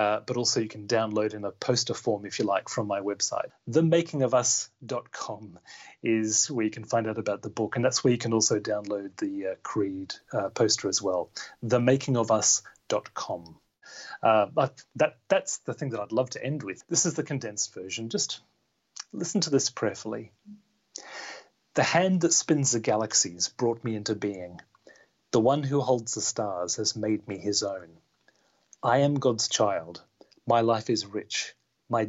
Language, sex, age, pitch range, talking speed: English, male, 30-49, 105-130 Hz, 170 wpm